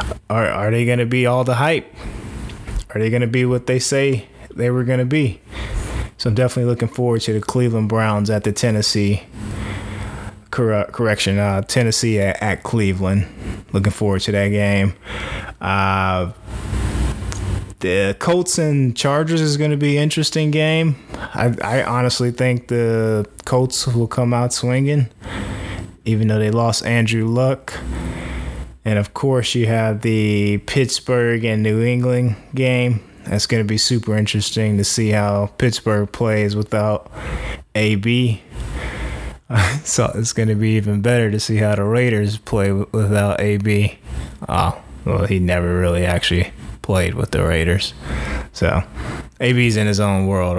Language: English